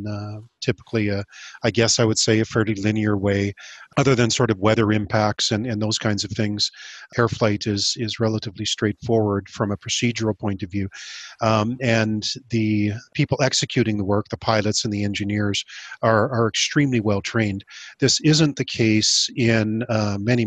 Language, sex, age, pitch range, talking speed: English, male, 40-59, 105-120 Hz, 175 wpm